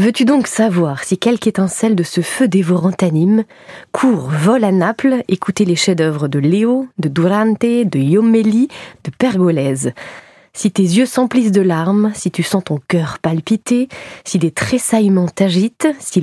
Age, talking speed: 20-39, 160 wpm